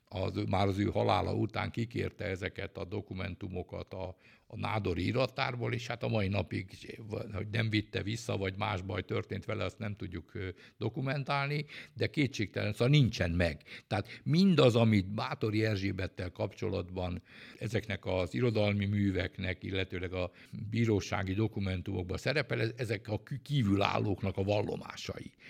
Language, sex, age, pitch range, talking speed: Hungarian, male, 60-79, 95-115 Hz, 135 wpm